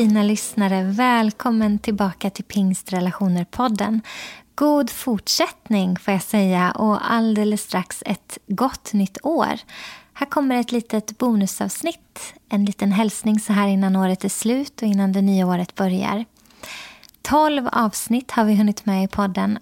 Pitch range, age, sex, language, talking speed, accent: 200-235 Hz, 20-39, female, Swedish, 140 wpm, native